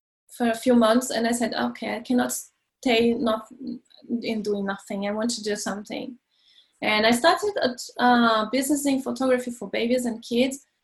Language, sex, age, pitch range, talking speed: English, female, 20-39, 220-255 Hz, 175 wpm